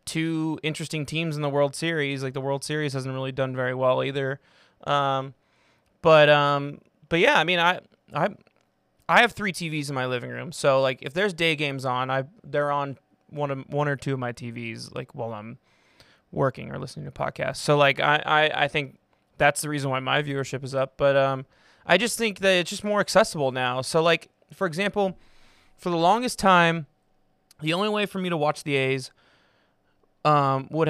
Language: English